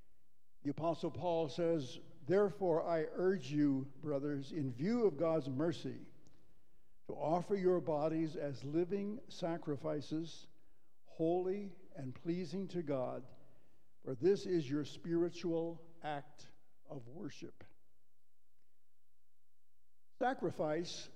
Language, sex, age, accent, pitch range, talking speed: English, male, 60-79, American, 145-170 Hz, 100 wpm